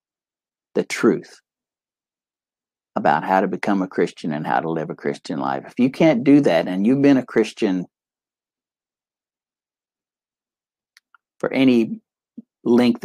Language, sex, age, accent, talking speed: English, male, 60-79, American, 130 wpm